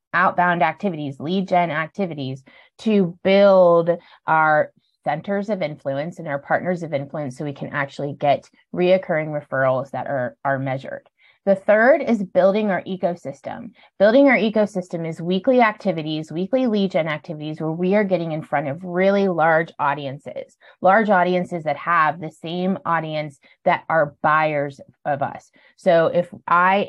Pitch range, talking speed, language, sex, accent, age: 150-185 Hz, 150 wpm, English, female, American, 30-49